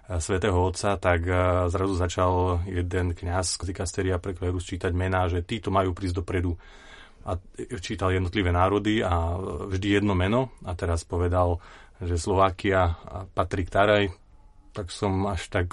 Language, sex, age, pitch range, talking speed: Slovak, male, 30-49, 90-100 Hz, 140 wpm